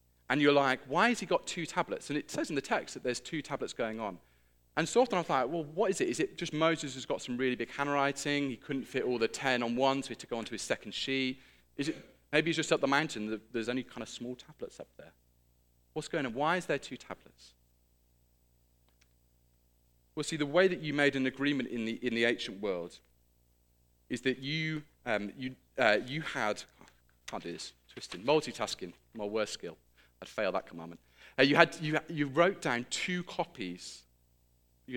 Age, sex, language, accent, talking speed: 30-49, male, English, British, 225 wpm